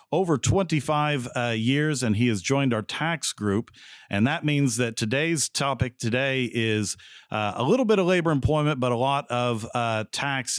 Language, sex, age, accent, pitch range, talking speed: English, male, 50-69, American, 105-135 Hz, 180 wpm